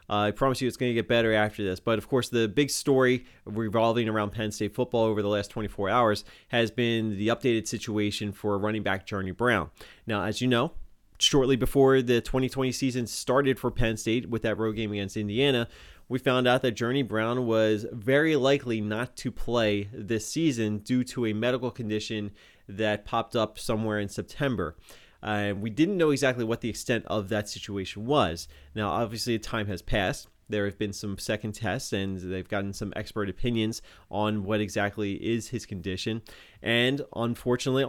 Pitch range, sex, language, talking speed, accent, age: 105-125 Hz, male, English, 185 wpm, American, 30-49